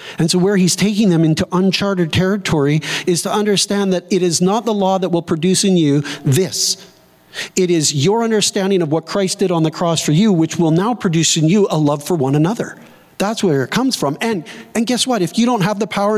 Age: 50-69